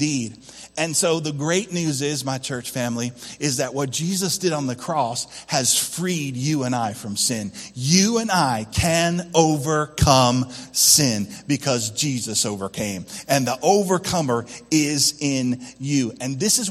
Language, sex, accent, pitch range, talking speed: English, male, American, 115-155 Hz, 150 wpm